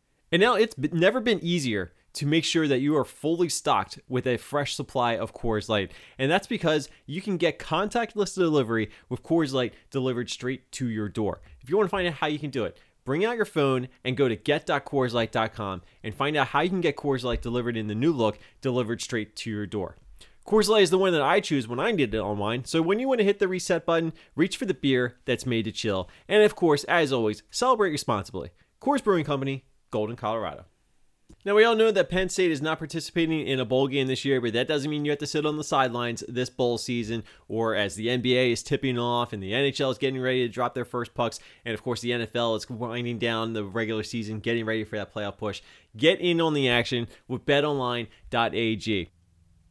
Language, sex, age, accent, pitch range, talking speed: English, male, 30-49, American, 110-150 Hz, 230 wpm